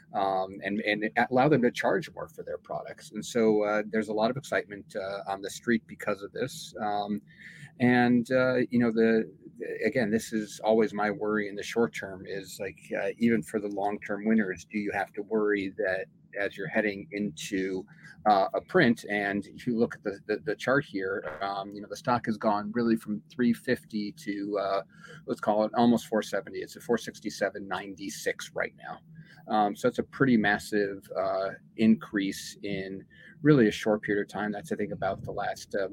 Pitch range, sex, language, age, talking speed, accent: 100-120 Hz, male, English, 40-59, 195 wpm, American